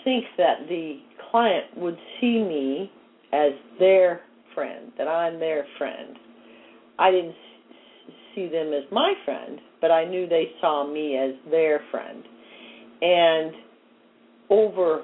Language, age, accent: English, 50-69, American